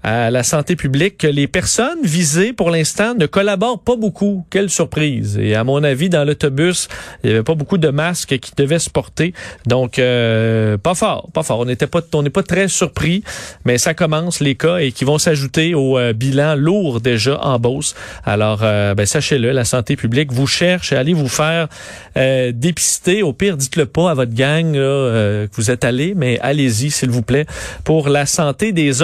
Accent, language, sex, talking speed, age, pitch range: Canadian, French, male, 195 wpm, 40-59, 130-175 Hz